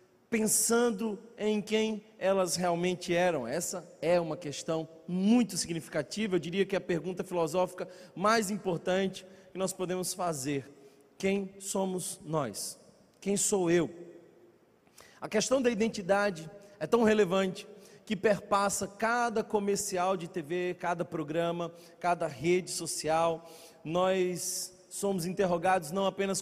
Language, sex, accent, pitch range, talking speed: Portuguese, male, Brazilian, 175-210 Hz, 125 wpm